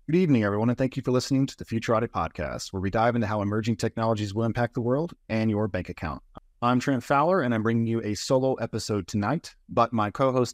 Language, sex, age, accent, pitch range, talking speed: English, male, 30-49, American, 100-125 Hz, 235 wpm